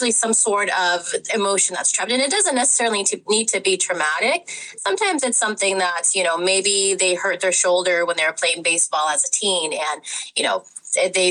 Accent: American